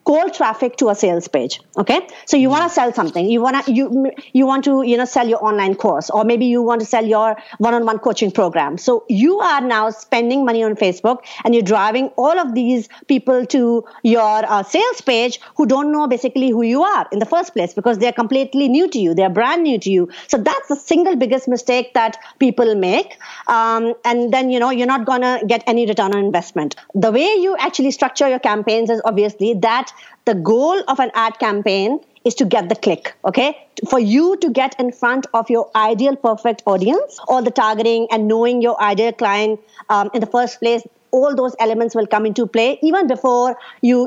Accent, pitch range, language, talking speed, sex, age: Indian, 220-265 Hz, English, 215 wpm, female, 50-69